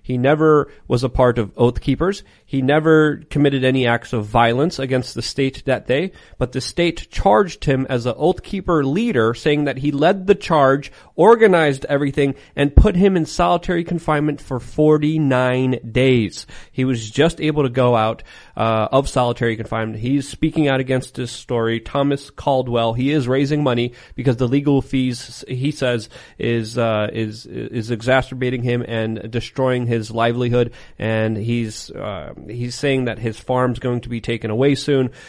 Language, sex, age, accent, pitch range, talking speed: English, male, 30-49, American, 115-145 Hz, 170 wpm